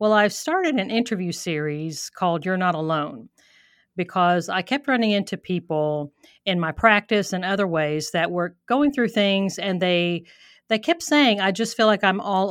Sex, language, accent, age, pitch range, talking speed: female, English, American, 50-69, 175-220 Hz, 180 wpm